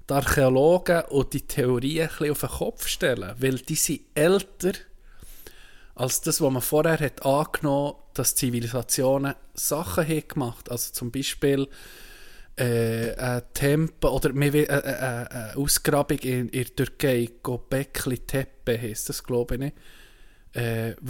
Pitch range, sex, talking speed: 125-160 Hz, male, 140 wpm